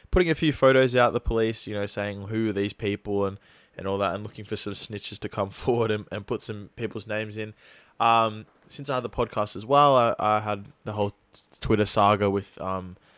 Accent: Australian